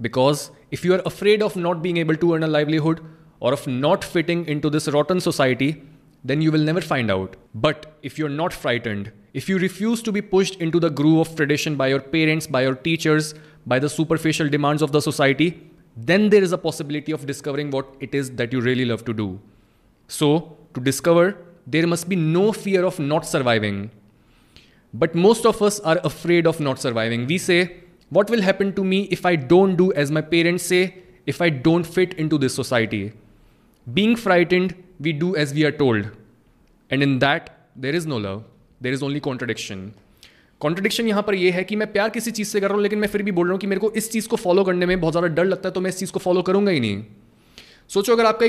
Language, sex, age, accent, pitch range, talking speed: Hindi, male, 20-39, native, 135-185 Hz, 225 wpm